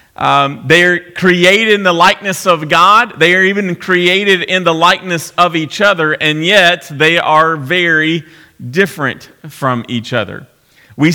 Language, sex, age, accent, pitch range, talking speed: English, male, 40-59, American, 150-190 Hz, 150 wpm